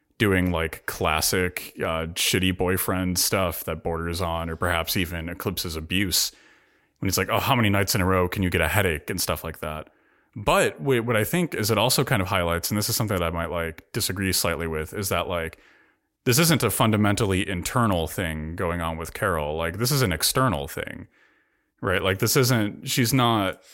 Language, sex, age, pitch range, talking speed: English, male, 30-49, 85-105 Hz, 200 wpm